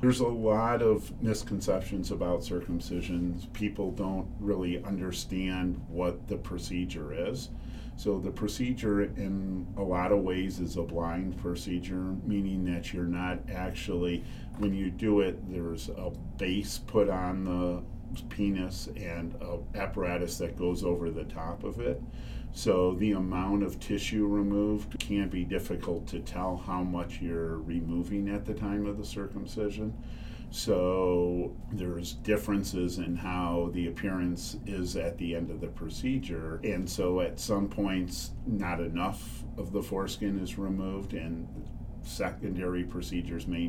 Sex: male